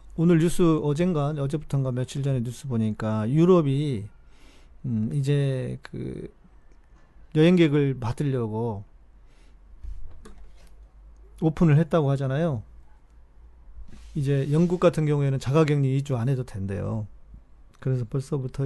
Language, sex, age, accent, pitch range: Korean, male, 40-59, native, 100-150 Hz